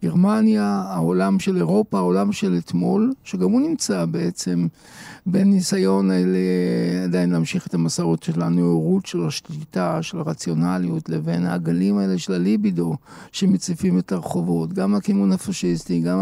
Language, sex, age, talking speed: Hebrew, male, 50-69, 135 wpm